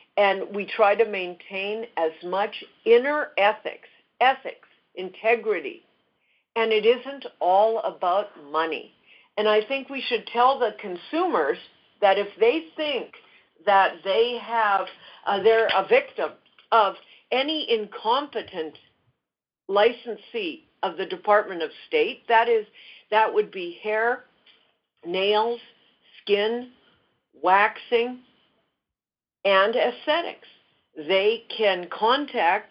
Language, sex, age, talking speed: English, female, 50-69, 110 wpm